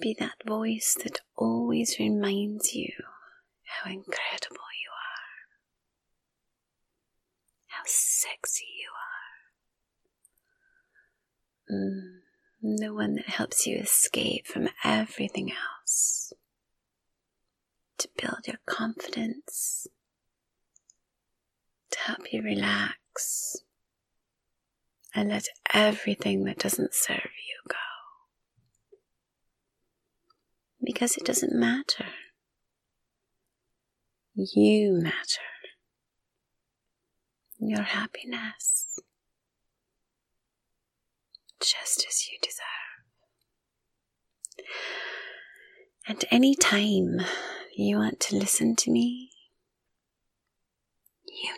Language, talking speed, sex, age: English, 75 wpm, female, 30-49